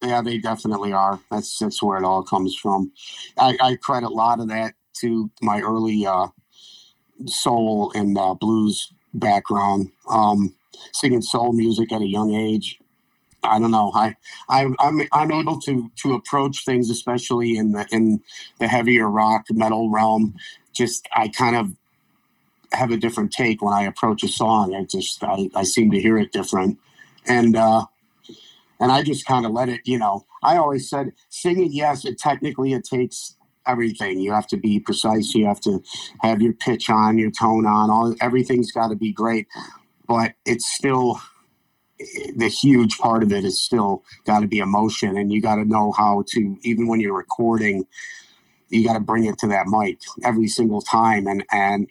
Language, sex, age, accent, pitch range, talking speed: English, male, 50-69, American, 105-120 Hz, 185 wpm